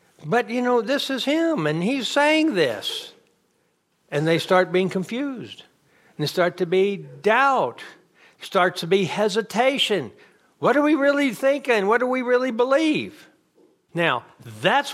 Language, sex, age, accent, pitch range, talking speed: English, male, 60-79, American, 180-285 Hz, 150 wpm